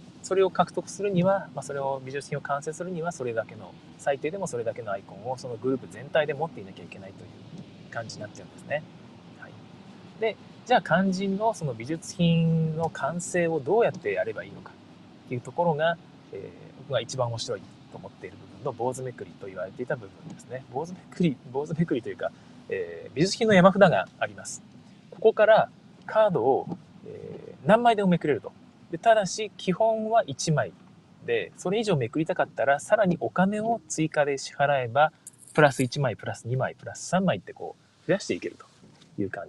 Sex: male